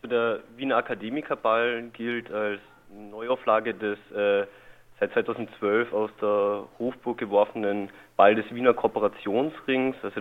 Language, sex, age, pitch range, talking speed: German, male, 20-39, 105-115 Hz, 110 wpm